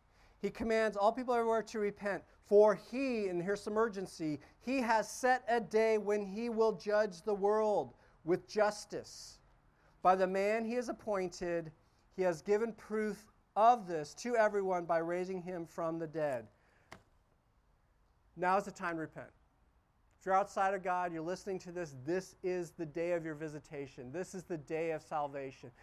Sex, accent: male, American